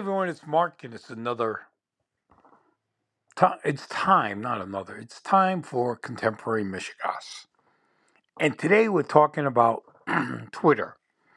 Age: 60-79